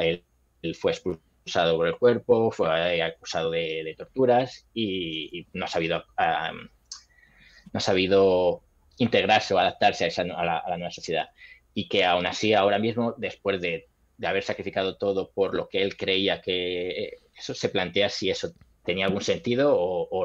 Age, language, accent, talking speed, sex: 20-39, Spanish, Spanish, 165 wpm, male